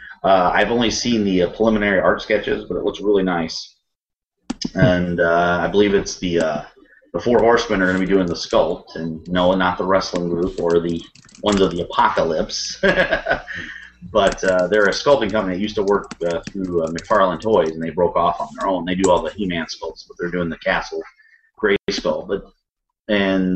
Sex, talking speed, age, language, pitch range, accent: male, 205 wpm, 30-49, English, 85-105 Hz, American